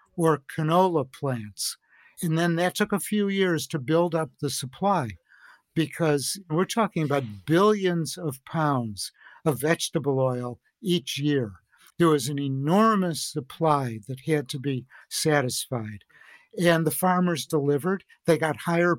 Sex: male